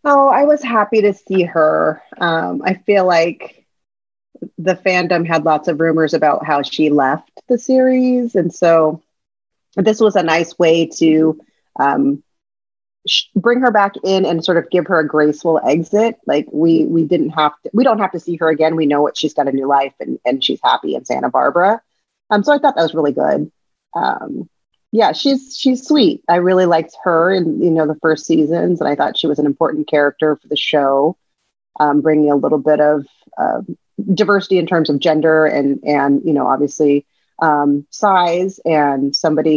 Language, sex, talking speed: English, female, 195 wpm